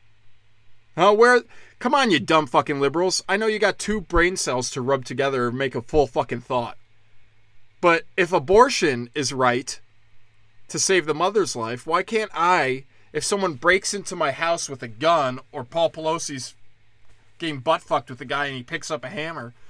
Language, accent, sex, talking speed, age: English, American, male, 185 wpm, 20-39